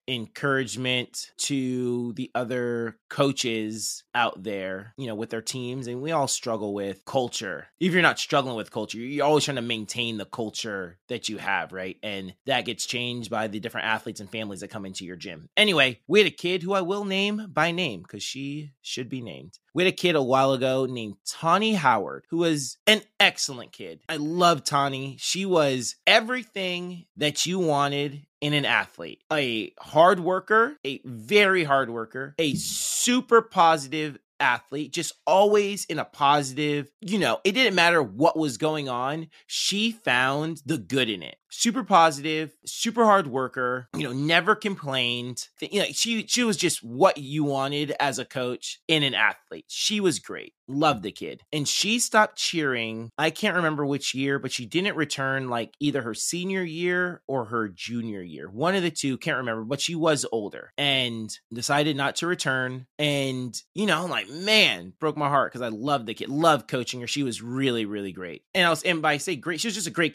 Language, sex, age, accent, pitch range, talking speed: English, male, 20-39, American, 125-175 Hz, 195 wpm